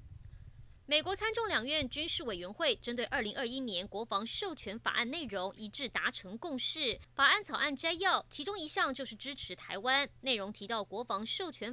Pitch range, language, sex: 220-315 Hz, Chinese, female